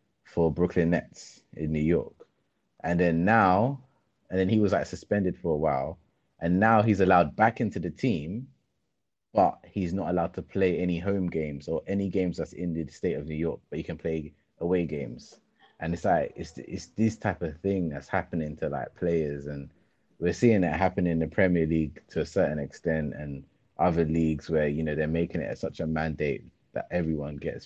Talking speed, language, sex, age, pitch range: 200 wpm, English, male, 30-49, 75-90 Hz